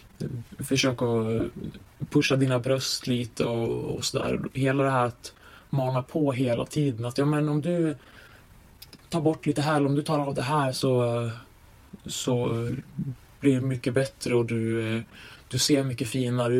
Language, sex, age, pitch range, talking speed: Swedish, male, 20-39, 120-150 Hz, 165 wpm